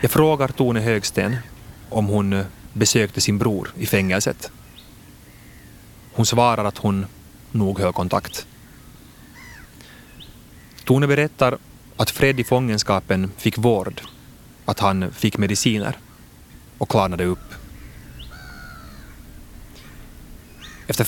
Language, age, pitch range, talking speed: Swedish, 30-49, 90-115 Hz, 95 wpm